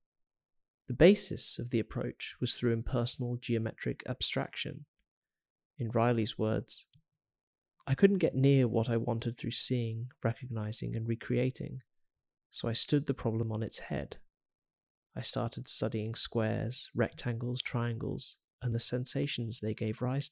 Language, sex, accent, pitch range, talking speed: English, male, British, 115-135 Hz, 135 wpm